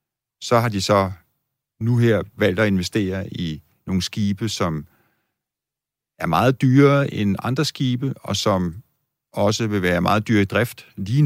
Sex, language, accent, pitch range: male, Danish, native, 90-115 Hz